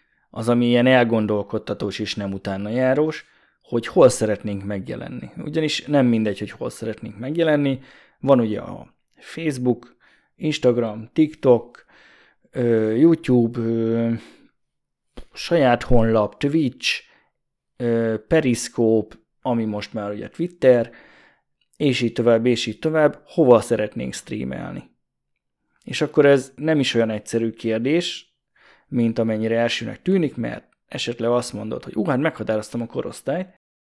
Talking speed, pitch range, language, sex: 115 wpm, 110-135 Hz, Hungarian, male